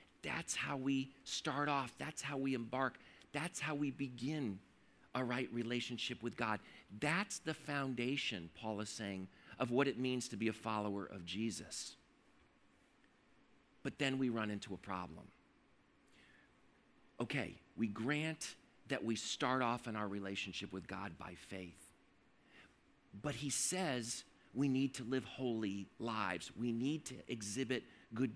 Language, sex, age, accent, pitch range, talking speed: English, male, 50-69, American, 120-150 Hz, 145 wpm